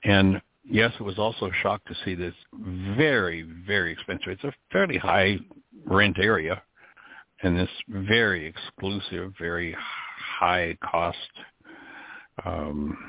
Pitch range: 85-95 Hz